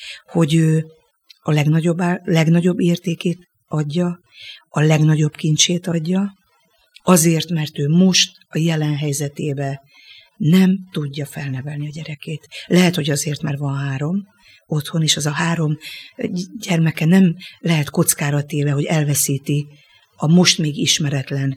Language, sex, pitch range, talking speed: Hungarian, female, 150-175 Hz, 125 wpm